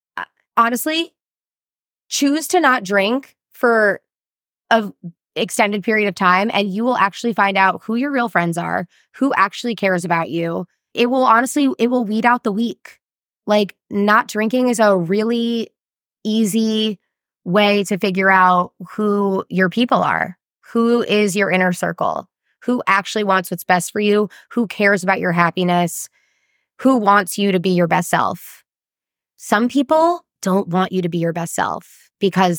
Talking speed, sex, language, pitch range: 160 wpm, female, English, 175-215 Hz